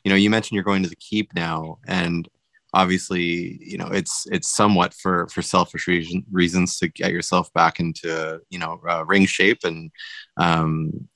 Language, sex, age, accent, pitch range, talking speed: English, male, 20-39, American, 85-95 Hz, 185 wpm